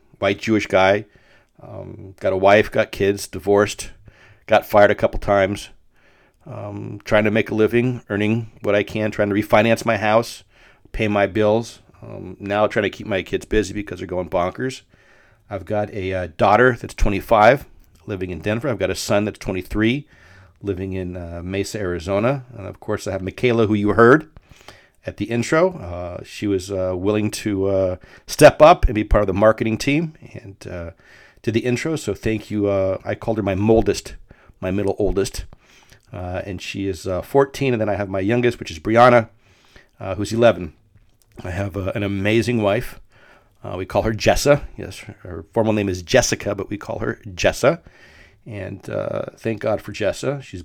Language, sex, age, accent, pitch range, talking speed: English, male, 40-59, American, 95-115 Hz, 185 wpm